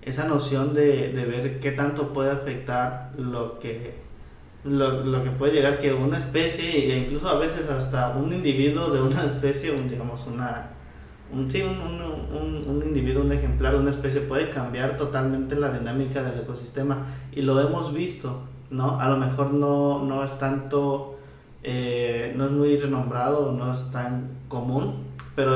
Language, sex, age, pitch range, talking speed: Spanish, male, 20-39, 125-140 Hz, 170 wpm